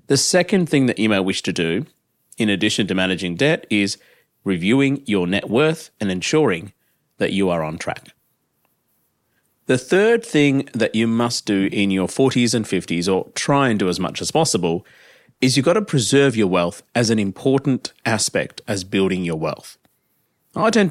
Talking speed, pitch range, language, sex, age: 180 wpm, 100-135 Hz, English, male, 30-49